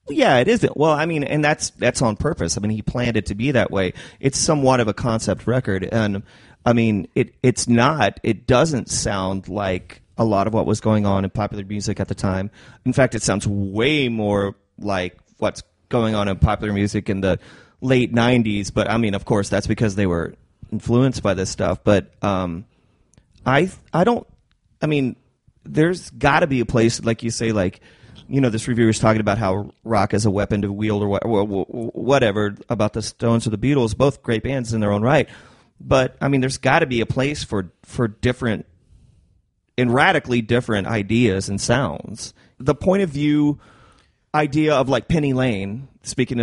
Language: English